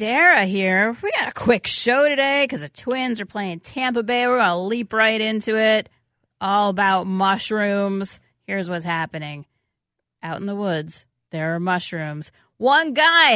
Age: 30-49